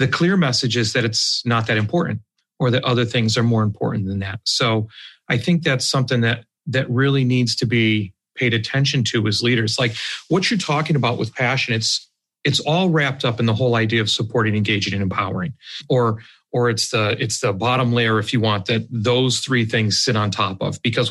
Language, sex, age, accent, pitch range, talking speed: English, male, 40-59, American, 110-135 Hz, 215 wpm